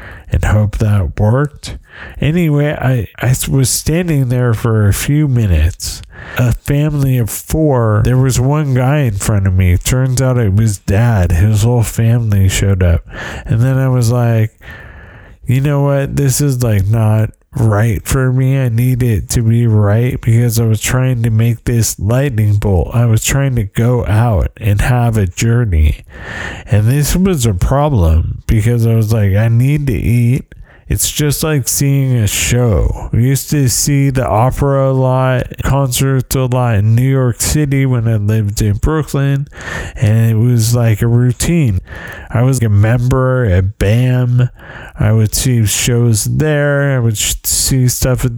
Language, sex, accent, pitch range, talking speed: English, male, American, 105-130 Hz, 170 wpm